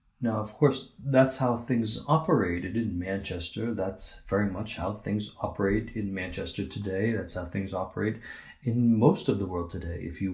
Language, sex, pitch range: English, male, 95-115 Hz